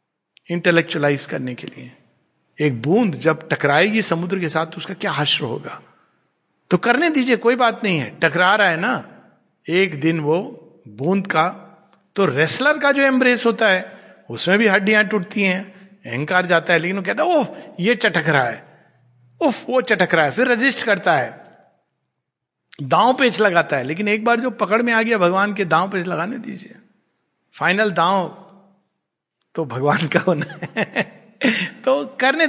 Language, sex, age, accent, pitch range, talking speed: Hindi, male, 60-79, native, 160-220 Hz, 170 wpm